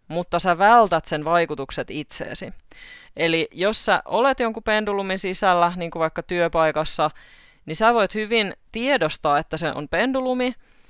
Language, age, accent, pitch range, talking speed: Finnish, 20-39, native, 150-220 Hz, 145 wpm